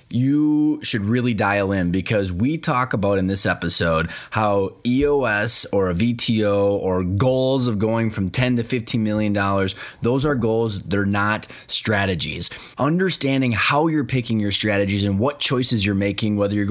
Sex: male